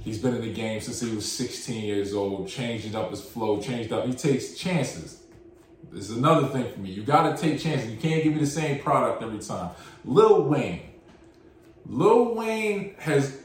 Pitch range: 115-160 Hz